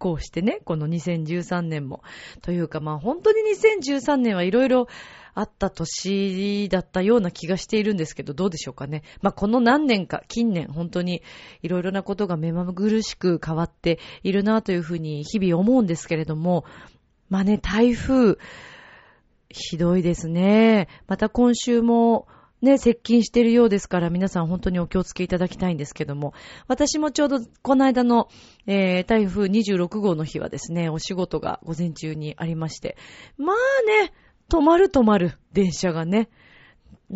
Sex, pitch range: female, 170-230 Hz